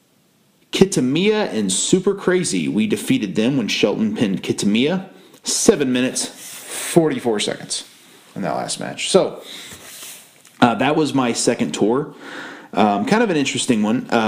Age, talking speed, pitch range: 30-49, 140 wpm, 100-140 Hz